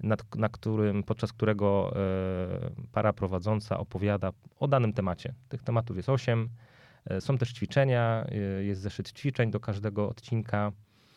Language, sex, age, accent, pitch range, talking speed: Polish, male, 30-49, native, 105-125 Hz, 125 wpm